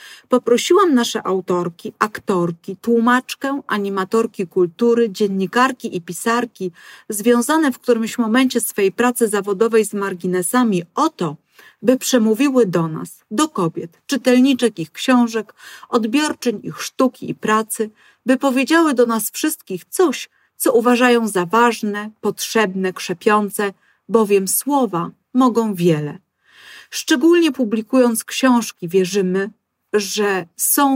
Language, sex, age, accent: Polish, female, 40-59, native